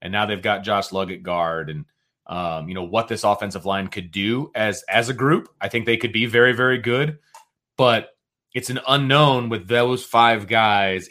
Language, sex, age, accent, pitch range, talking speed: English, male, 30-49, American, 100-125 Hz, 200 wpm